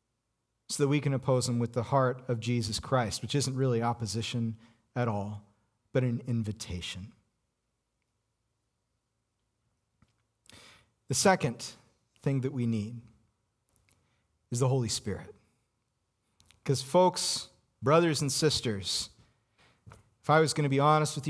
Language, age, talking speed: English, 40-59, 125 wpm